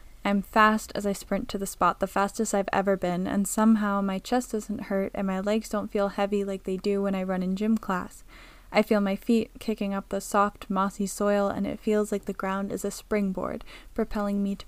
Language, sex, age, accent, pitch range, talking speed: English, female, 10-29, American, 195-215 Hz, 230 wpm